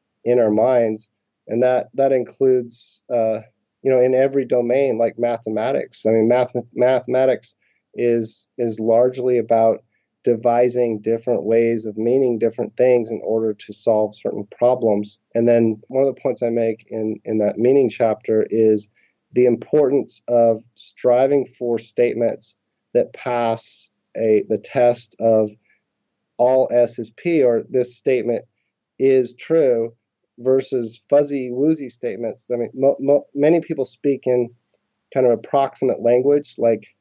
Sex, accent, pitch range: male, American, 115-135 Hz